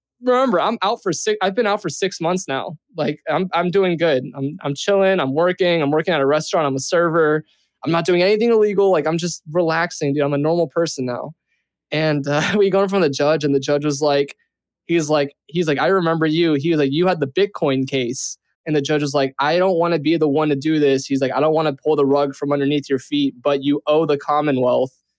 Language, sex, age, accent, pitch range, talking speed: English, male, 20-39, American, 140-165 Hz, 250 wpm